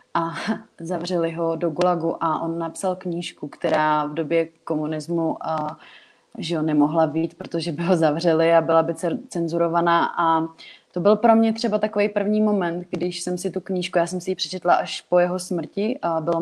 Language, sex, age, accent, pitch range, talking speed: Czech, female, 30-49, native, 170-200 Hz, 185 wpm